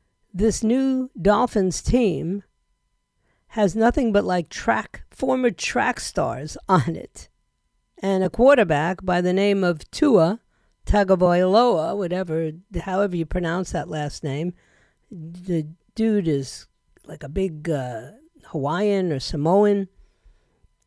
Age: 50-69